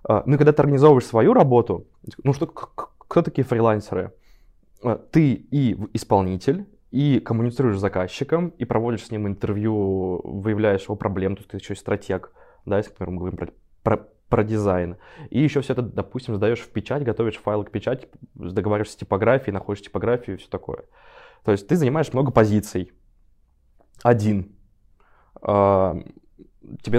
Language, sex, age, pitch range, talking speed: Russian, male, 20-39, 95-120 Hz, 155 wpm